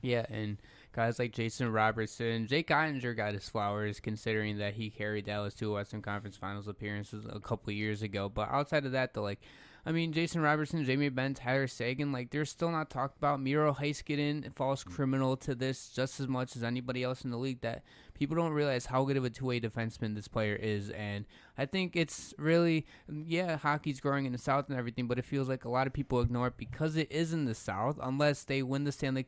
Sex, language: male, English